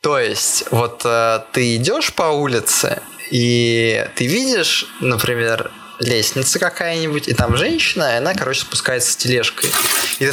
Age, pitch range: 20-39, 125-170 Hz